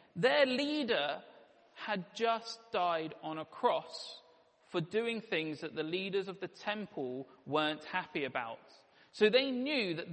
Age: 40-59